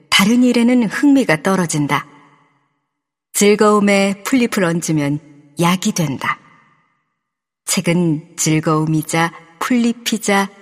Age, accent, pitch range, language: 40-59, native, 160-215 Hz, Korean